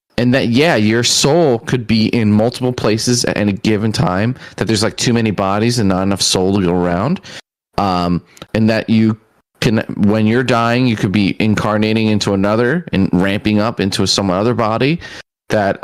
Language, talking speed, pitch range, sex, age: English, 185 wpm, 100-120 Hz, male, 30-49